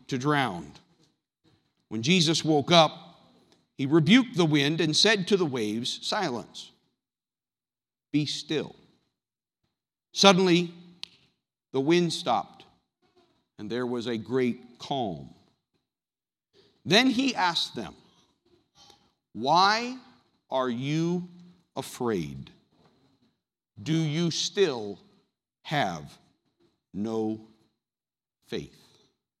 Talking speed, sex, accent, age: 85 wpm, male, American, 50-69